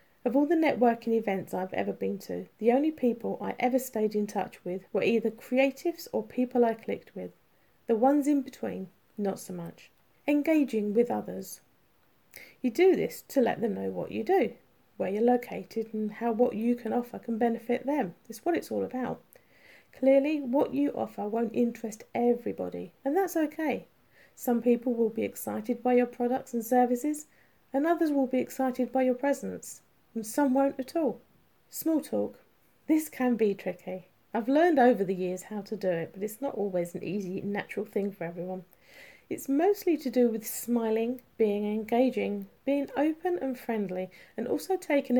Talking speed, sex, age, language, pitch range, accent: 180 wpm, female, 40-59, English, 205-270 Hz, British